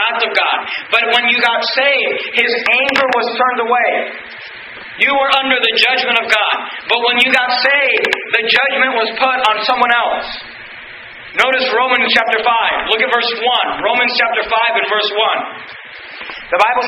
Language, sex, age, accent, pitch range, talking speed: English, male, 40-59, American, 235-280 Hz, 165 wpm